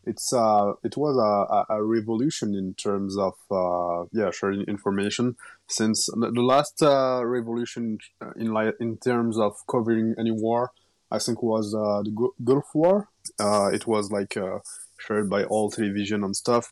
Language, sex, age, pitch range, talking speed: English, male, 20-39, 105-125 Hz, 165 wpm